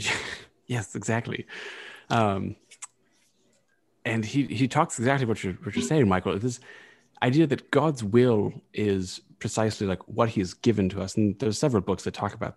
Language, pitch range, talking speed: English, 95-115 Hz, 165 wpm